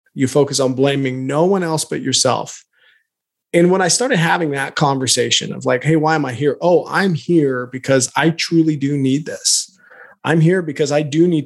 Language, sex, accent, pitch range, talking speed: English, male, American, 125-155 Hz, 200 wpm